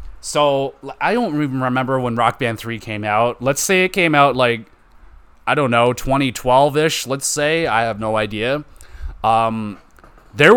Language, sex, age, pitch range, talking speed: English, male, 30-49, 115-145 Hz, 165 wpm